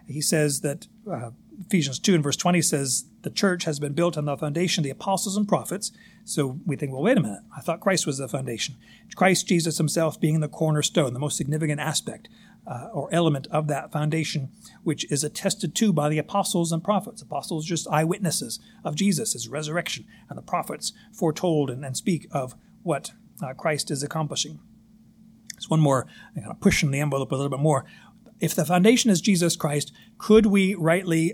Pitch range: 150-195 Hz